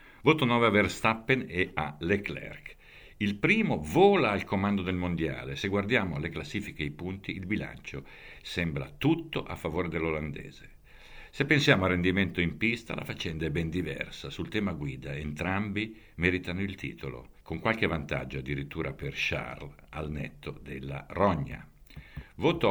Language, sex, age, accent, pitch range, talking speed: Italian, male, 60-79, native, 75-100 Hz, 150 wpm